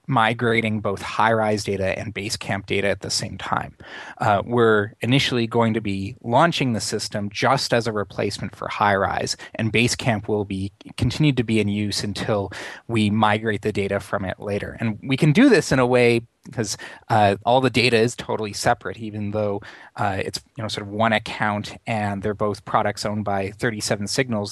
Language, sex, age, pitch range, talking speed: English, male, 30-49, 100-115 Hz, 190 wpm